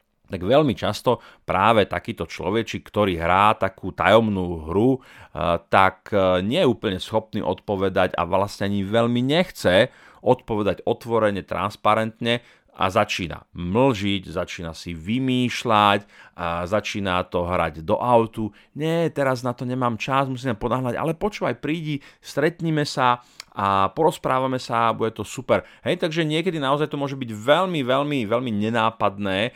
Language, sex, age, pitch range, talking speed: Slovak, male, 40-59, 100-135 Hz, 135 wpm